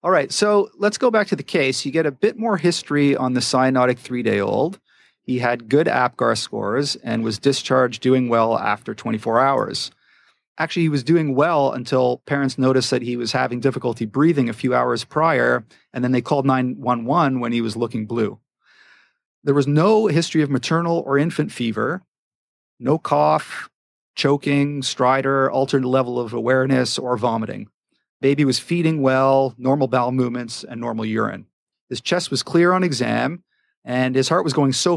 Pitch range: 120-145 Hz